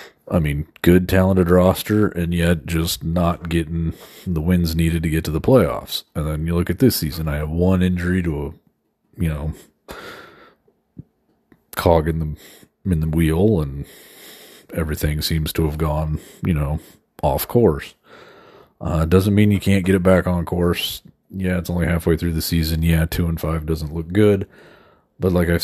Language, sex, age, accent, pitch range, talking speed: English, male, 40-59, American, 80-90 Hz, 180 wpm